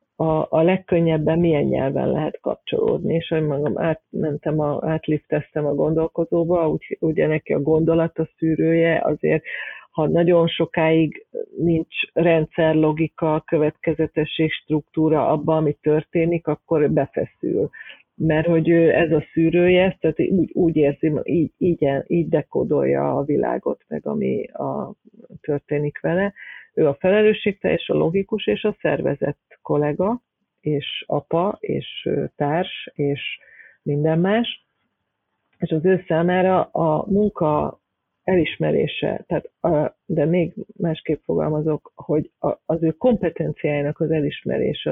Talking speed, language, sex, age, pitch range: 120 wpm, Hungarian, female, 50-69, 155-175 Hz